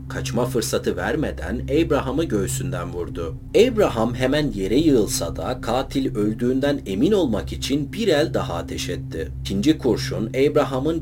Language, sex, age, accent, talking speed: Turkish, male, 40-59, native, 130 wpm